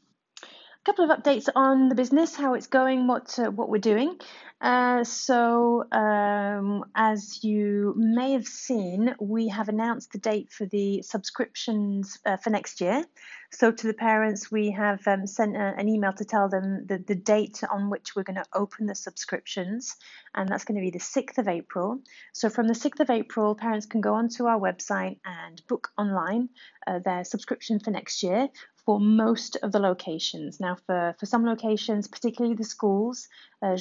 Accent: British